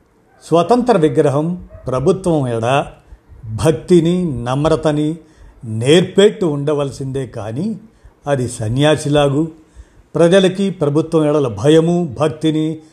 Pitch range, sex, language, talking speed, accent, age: 130-165 Hz, male, Telugu, 75 wpm, native, 50-69